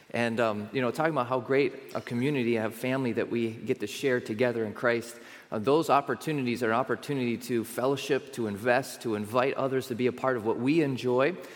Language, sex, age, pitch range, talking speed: English, male, 30-49, 120-145 Hz, 215 wpm